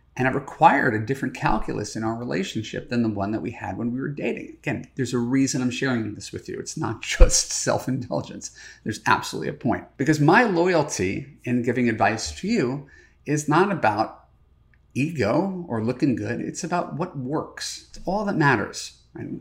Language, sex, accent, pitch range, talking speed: English, male, American, 120-165 Hz, 190 wpm